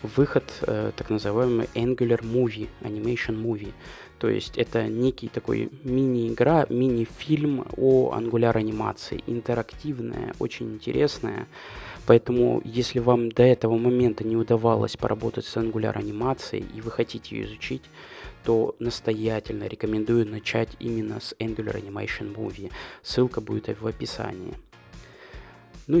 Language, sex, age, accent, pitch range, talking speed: Russian, male, 20-39, native, 110-125 Hz, 120 wpm